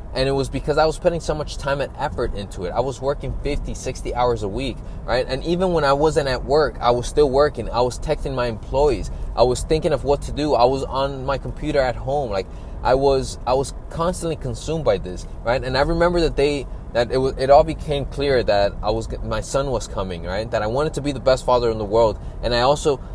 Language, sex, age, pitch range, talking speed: English, male, 20-39, 115-145 Hz, 250 wpm